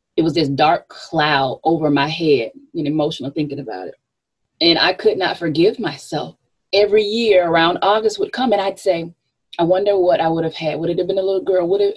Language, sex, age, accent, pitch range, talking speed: English, female, 20-39, American, 150-190 Hz, 220 wpm